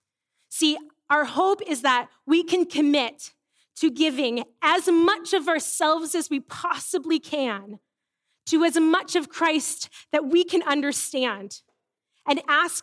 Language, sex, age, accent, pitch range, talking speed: English, female, 20-39, American, 220-305 Hz, 135 wpm